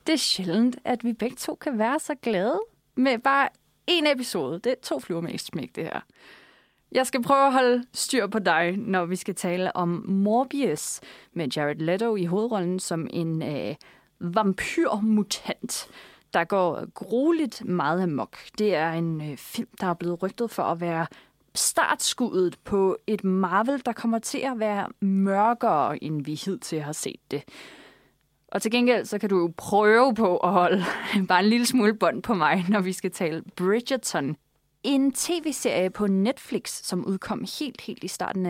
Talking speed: 175 wpm